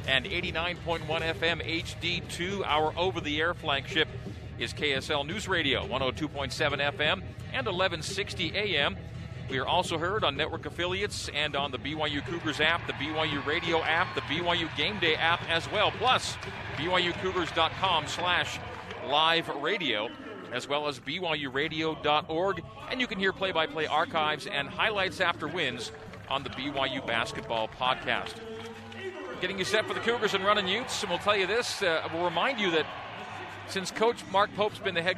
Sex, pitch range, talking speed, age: male, 145-185 Hz, 160 wpm, 40-59